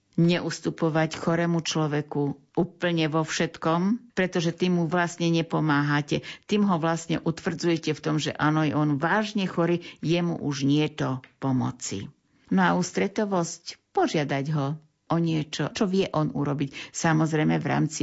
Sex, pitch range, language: female, 150-180 Hz, Slovak